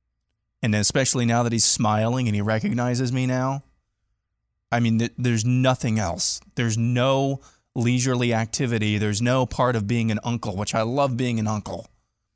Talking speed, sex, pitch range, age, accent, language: 160 wpm, male, 110-130 Hz, 20-39, American, English